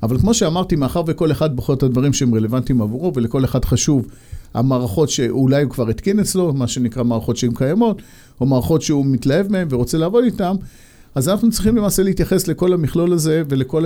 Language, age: Hebrew, 50-69